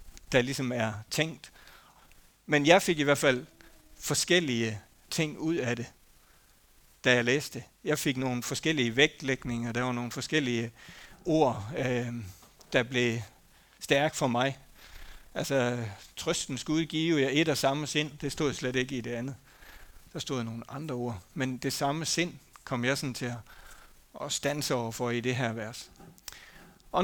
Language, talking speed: Danish, 160 wpm